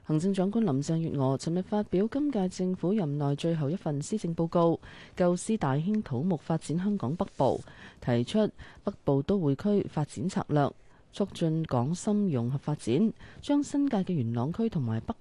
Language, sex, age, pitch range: Chinese, female, 20-39, 135-190 Hz